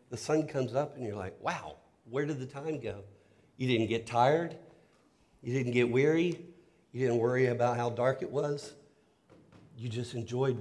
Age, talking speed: 50-69, 180 wpm